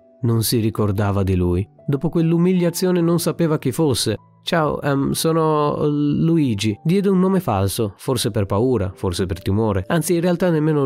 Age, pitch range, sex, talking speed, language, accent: 30-49, 110-145 Hz, male, 155 wpm, Italian, native